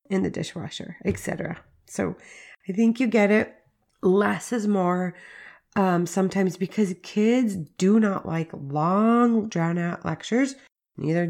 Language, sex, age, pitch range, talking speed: English, female, 20-39, 170-210 Hz, 135 wpm